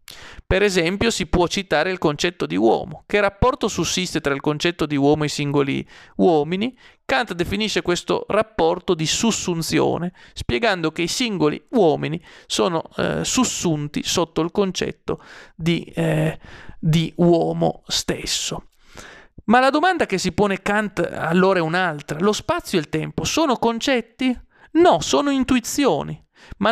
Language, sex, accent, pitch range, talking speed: Italian, male, native, 160-230 Hz, 140 wpm